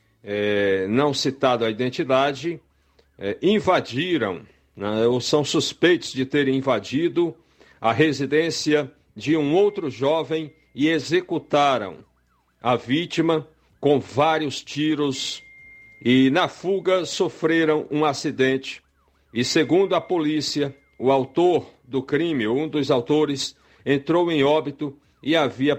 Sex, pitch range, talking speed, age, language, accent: male, 125-155 Hz, 110 wpm, 60-79, Portuguese, Brazilian